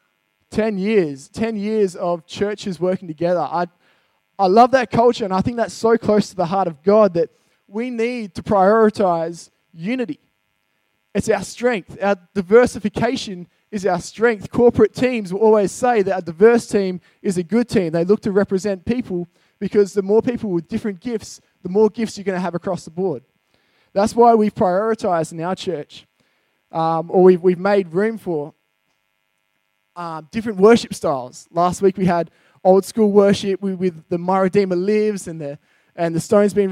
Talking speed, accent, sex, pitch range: 180 wpm, Australian, male, 180-215 Hz